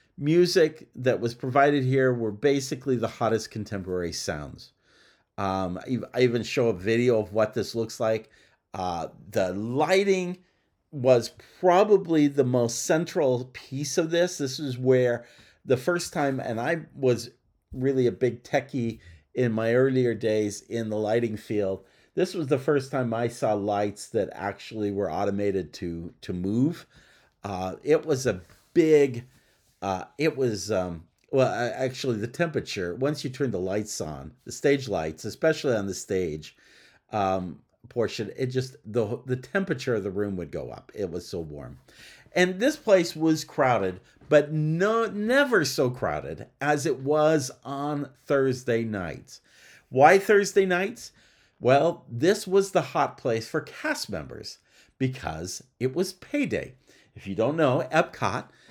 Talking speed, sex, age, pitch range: 155 wpm, male, 50-69, 110-155 Hz